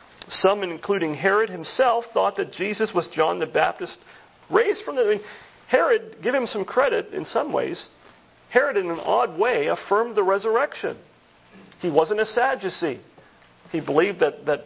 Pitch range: 150-225 Hz